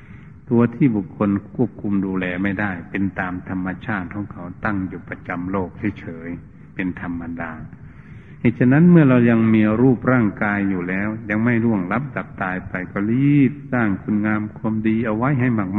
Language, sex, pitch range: Thai, male, 95-125 Hz